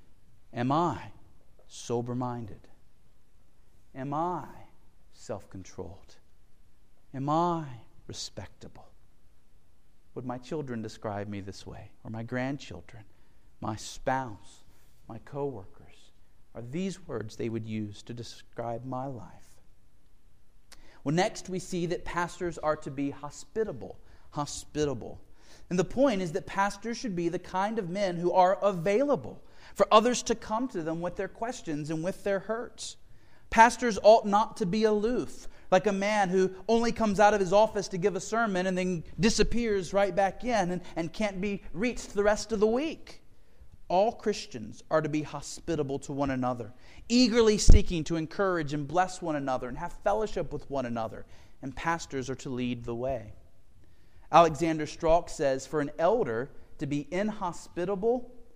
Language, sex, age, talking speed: English, male, 40-59, 150 wpm